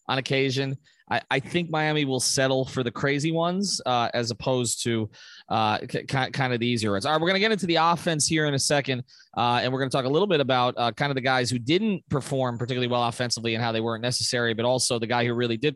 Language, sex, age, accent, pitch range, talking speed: English, male, 30-49, American, 125-150 Hz, 265 wpm